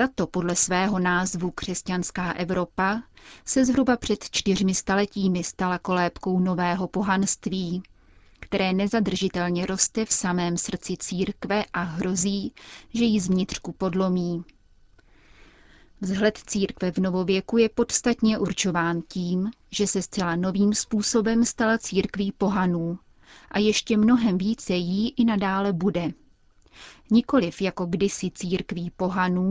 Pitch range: 180-215 Hz